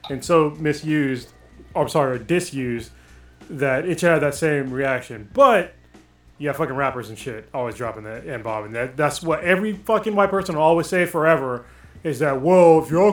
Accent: American